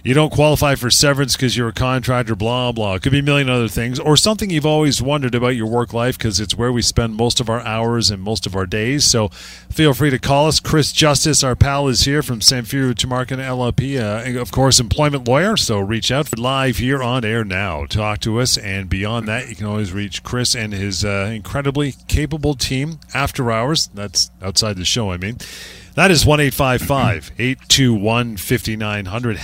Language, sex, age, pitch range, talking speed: English, male, 40-59, 105-140 Hz, 205 wpm